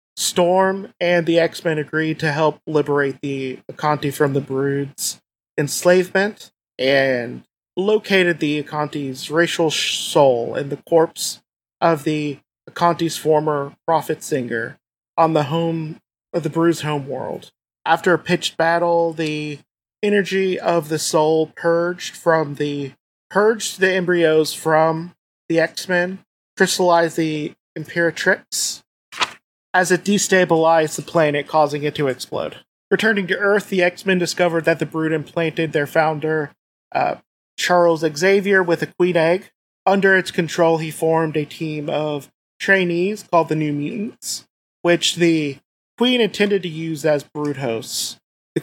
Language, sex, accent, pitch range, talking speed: English, male, American, 150-175 Hz, 140 wpm